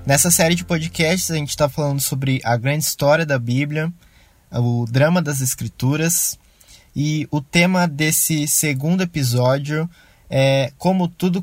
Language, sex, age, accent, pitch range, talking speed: Portuguese, male, 20-39, Brazilian, 130-160 Hz, 140 wpm